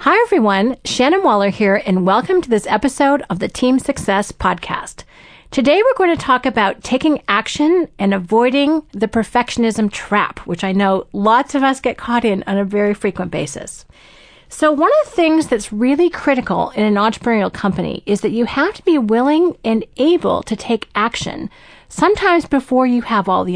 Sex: female